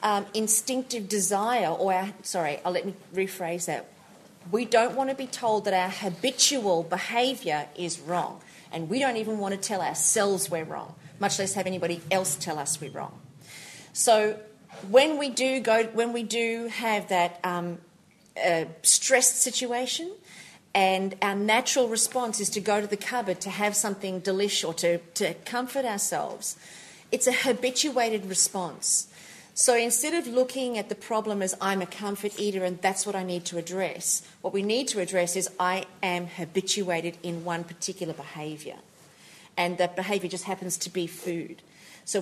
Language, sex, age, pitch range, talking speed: English, female, 40-59, 180-230 Hz, 170 wpm